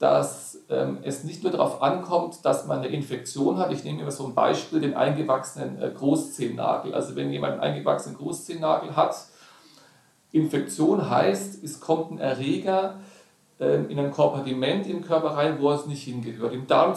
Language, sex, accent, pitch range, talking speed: German, male, German, 135-175 Hz, 160 wpm